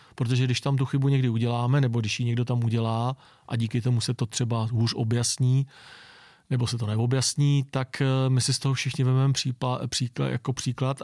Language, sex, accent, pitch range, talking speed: Czech, male, native, 120-135 Hz, 190 wpm